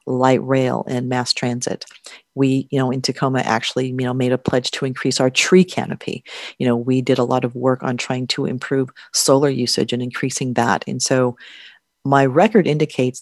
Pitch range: 125-140 Hz